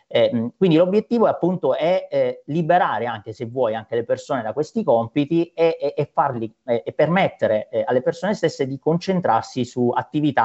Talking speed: 185 wpm